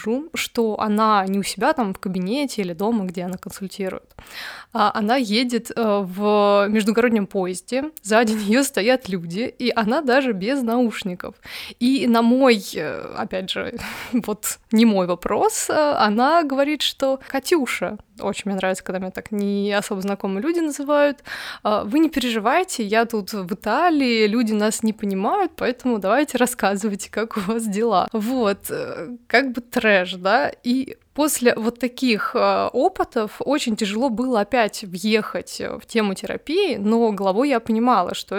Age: 20-39